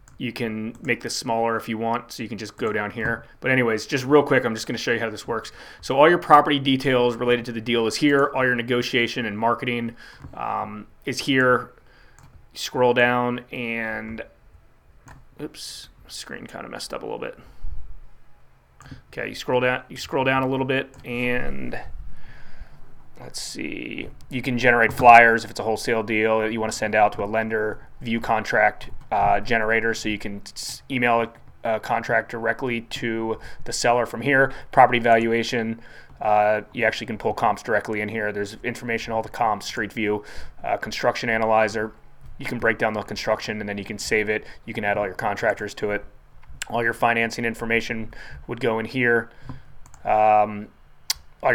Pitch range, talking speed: 110-120 Hz, 180 wpm